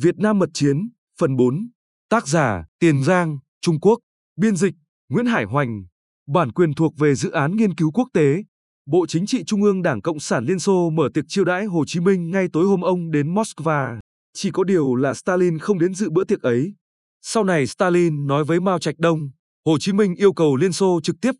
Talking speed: 220 wpm